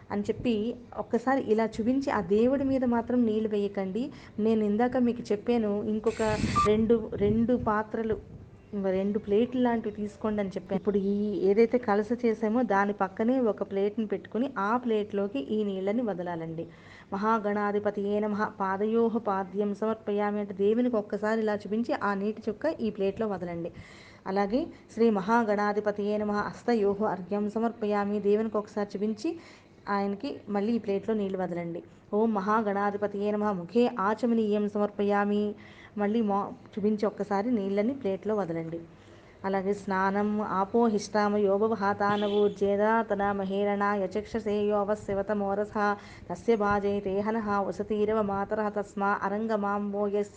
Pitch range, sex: 200-220 Hz, female